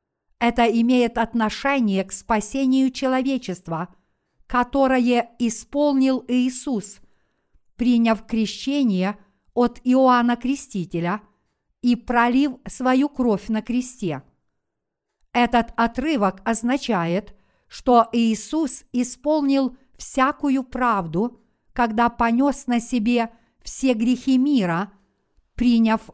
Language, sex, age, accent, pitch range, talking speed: Russian, female, 50-69, native, 210-255 Hz, 85 wpm